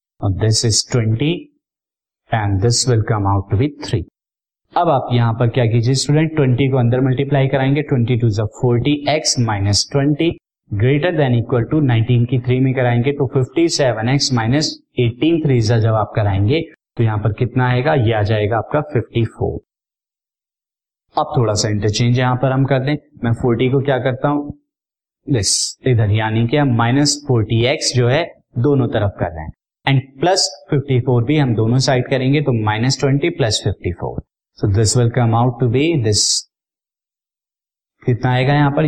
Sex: male